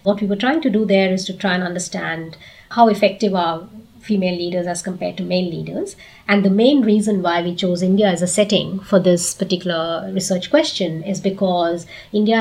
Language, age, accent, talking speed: English, 30-49, Indian, 200 wpm